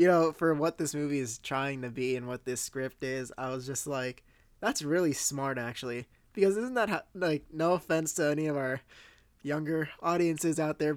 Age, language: 20-39, English